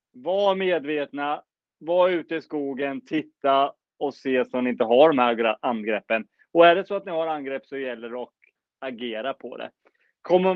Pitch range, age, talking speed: 130-160 Hz, 30-49, 180 wpm